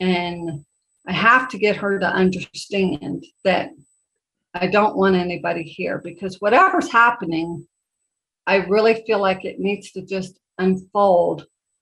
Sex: female